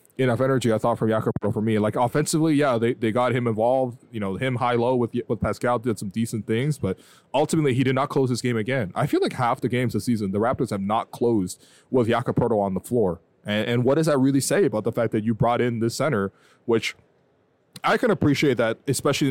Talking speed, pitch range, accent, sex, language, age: 235 wpm, 110-135 Hz, American, male, English, 20-39